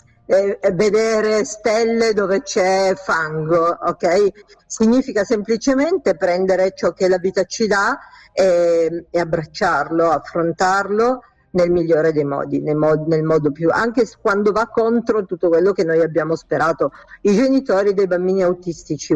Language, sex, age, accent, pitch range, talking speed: Italian, female, 50-69, native, 170-210 Hz, 130 wpm